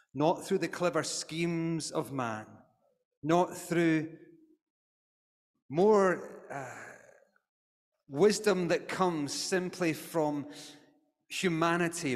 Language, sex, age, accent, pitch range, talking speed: English, male, 30-49, British, 125-180 Hz, 85 wpm